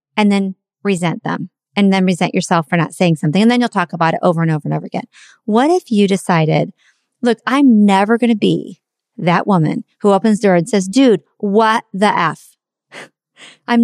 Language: English